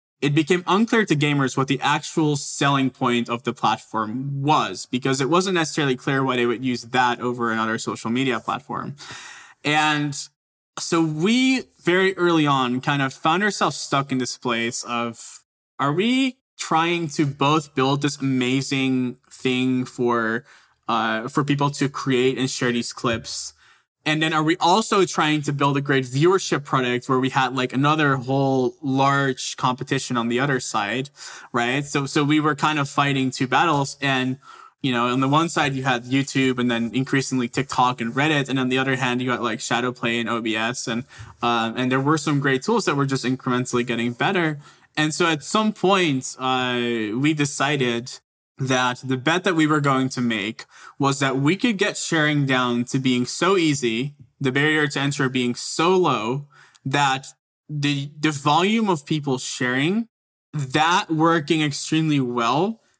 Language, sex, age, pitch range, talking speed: English, male, 20-39, 125-155 Hz, 175 wpm